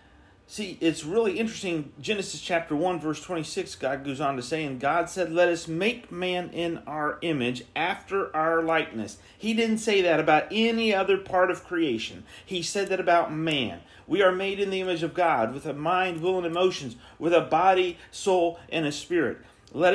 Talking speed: 195 wpm